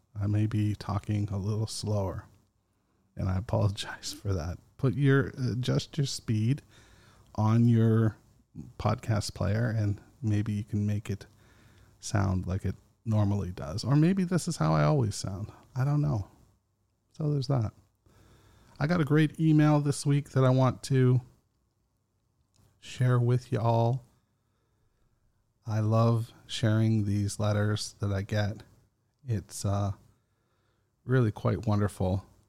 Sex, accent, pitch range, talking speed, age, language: male, American, 105-120 Hz, 135 wpm, 40-59, English